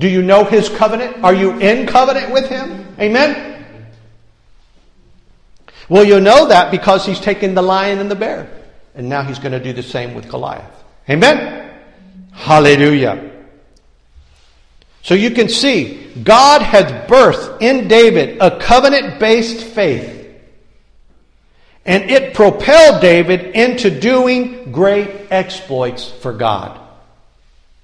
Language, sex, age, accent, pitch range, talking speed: English, male, 50-69, American, 135-220 Hz, 125 wpm